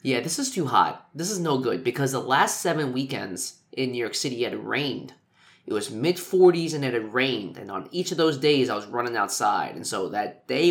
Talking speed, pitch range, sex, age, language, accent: 230 wpm, 130-170 Hz, male, 20-39, English, American